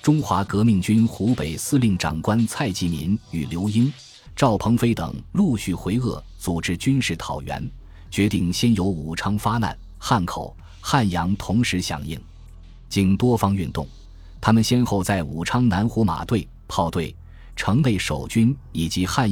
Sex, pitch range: male, 85-115 Hz